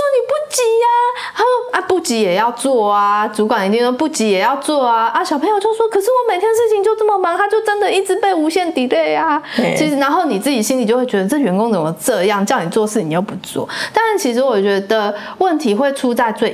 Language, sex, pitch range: Chinese, female, 195-295 Hz